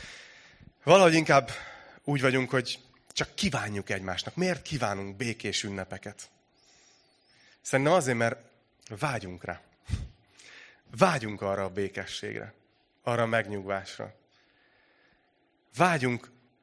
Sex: male